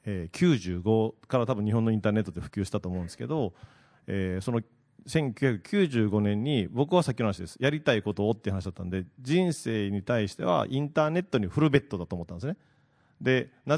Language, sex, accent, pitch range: Japanese, male, native, 105-155 Hz